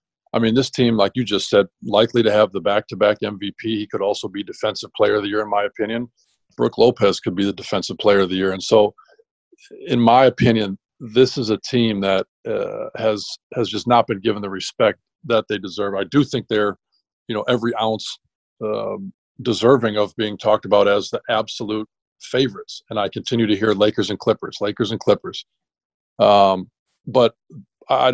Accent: American